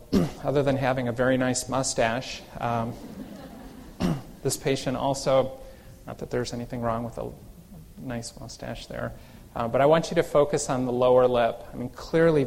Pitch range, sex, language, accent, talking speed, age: 120-140 Hz, male, English, American, 170 wpm, 30-49